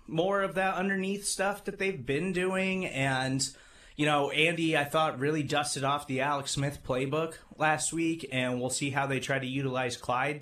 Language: English